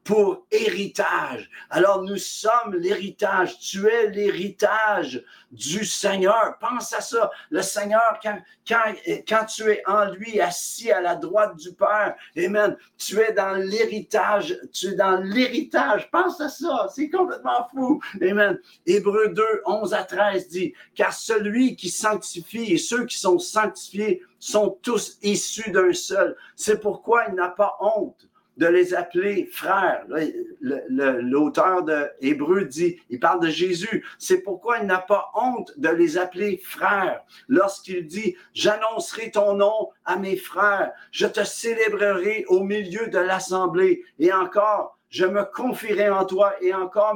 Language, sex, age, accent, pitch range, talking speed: French, male, 50-69, French, 185-310 Hz, 160 wpm